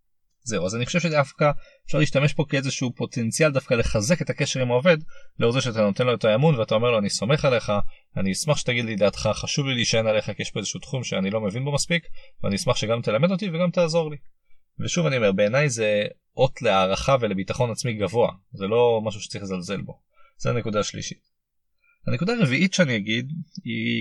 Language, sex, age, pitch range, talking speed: Hebrew, male, 30-49, 105-145 Hz, 200 wpm